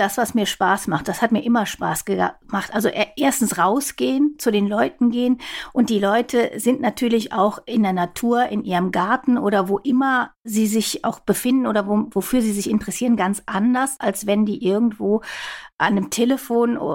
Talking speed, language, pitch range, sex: 180 wpm, German, 195-240 Hz, female